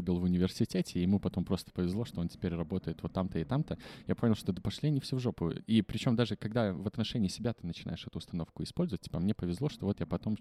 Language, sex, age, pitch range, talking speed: Russian, male, 20-39, 85-100 Hz, 260 wpm